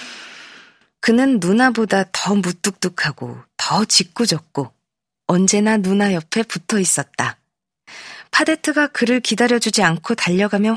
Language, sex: Korean, female